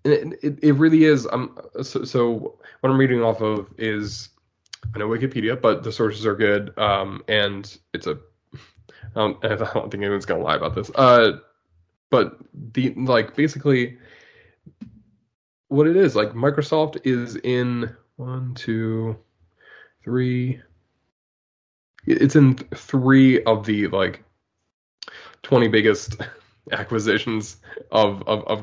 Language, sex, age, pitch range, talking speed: English, male, 20-39, 105-140 Hz, 135 wpm